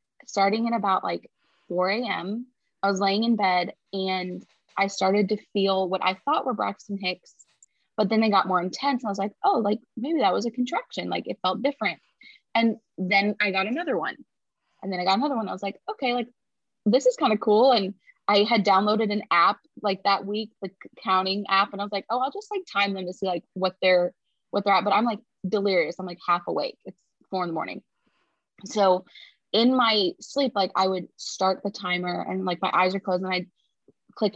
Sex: female